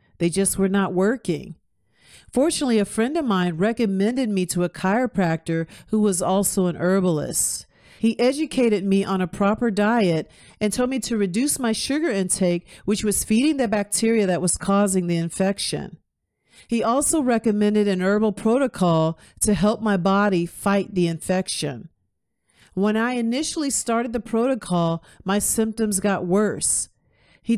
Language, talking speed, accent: English, 150 wpm, American